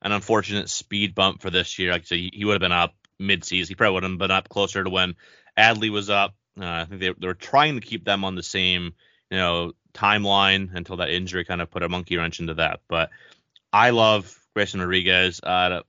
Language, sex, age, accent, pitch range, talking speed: English, male, 30-49, American, 90-100 Hz, 230 wpm